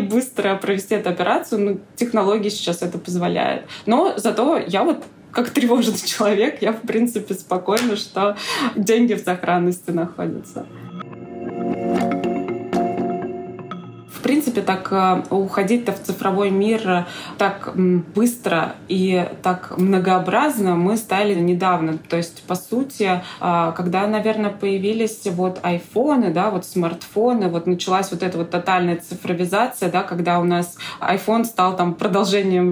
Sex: female